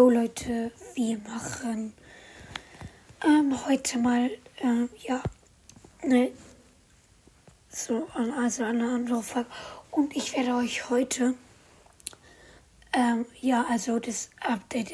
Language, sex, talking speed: German, female, 95 wpm